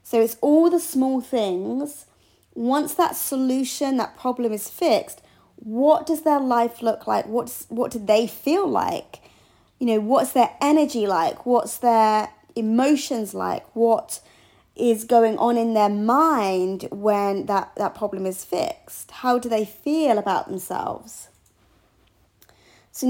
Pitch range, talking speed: 205-275 Hz, 140 wpm